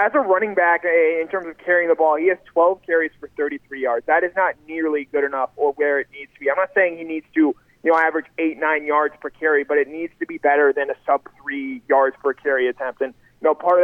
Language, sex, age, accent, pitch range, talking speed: English, male, 20-39, American, 145-185 Hz, 275 wpm